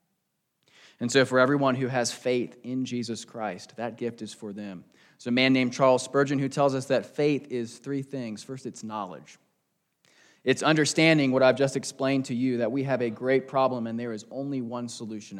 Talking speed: 205 wpm